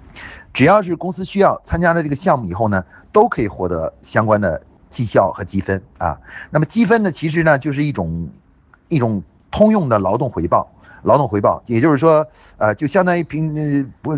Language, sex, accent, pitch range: Chinese, male, native, 105-165 Hz